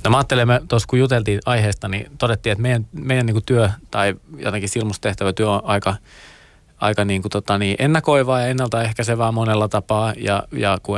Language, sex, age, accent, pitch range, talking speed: Finnish, male, 30-49, native, 95-110 Hz, 180 wpm